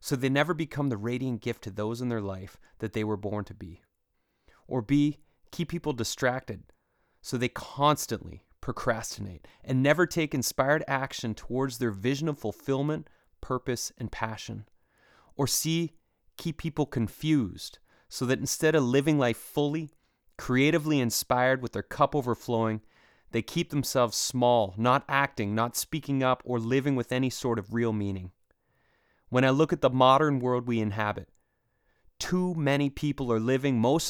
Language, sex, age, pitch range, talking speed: English, male, 30-49, 115-145 Hz, 160 wpm